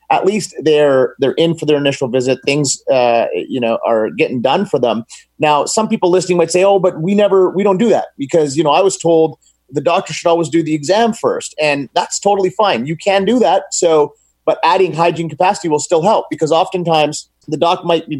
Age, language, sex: 30-49, English, male